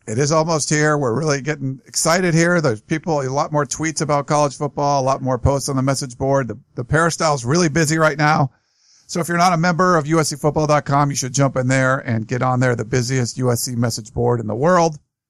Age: 50-69